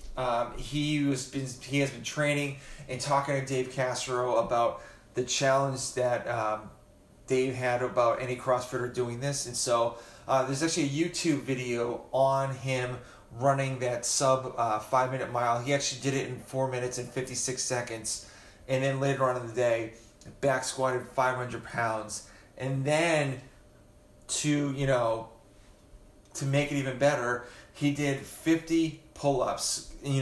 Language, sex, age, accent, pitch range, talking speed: English, male, 30-49, American, 120-140 Hz, 150 wpm